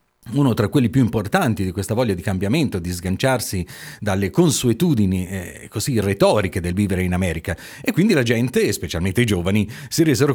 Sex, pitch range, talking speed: male, 95-125 Hz, 175 wpm